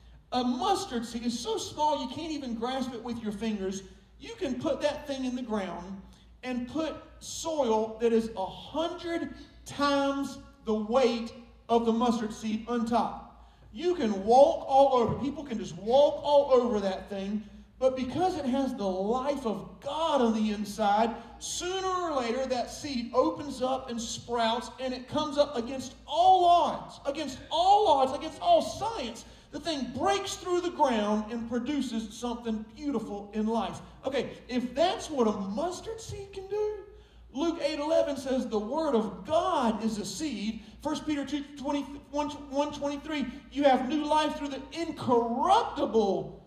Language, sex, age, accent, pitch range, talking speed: English, male, 40-59, American, 230-300 Hz, 170 wpm